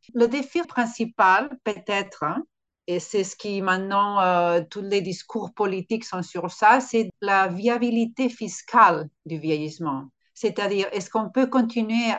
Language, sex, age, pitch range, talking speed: French, female, 50-69, 185-235 Hz, 145 wpm